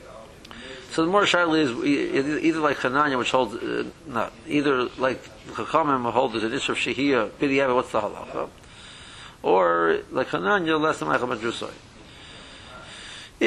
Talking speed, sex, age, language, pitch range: 150 wpm, male, 50-69, English, 110-140 Hz